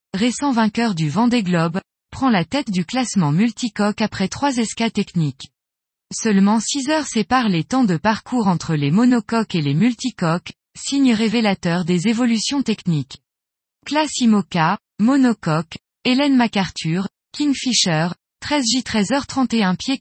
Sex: female